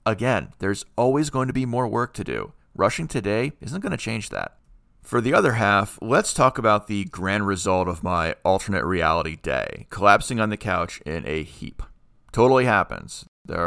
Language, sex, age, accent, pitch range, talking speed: English, male, 40-59, American, 90-115 Hz, 185 wpm